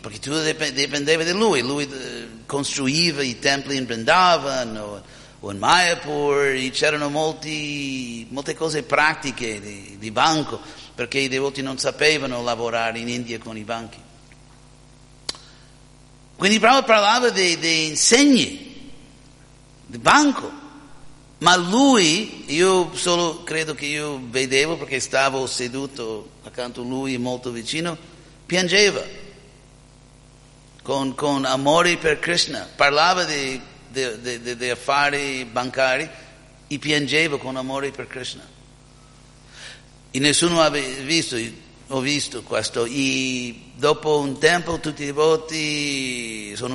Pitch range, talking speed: 130-155 Hz, 115 wpm